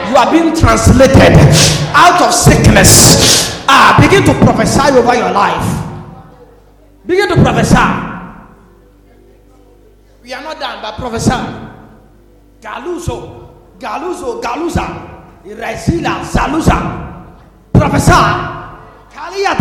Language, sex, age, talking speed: English, male, 40-59, 85 wpm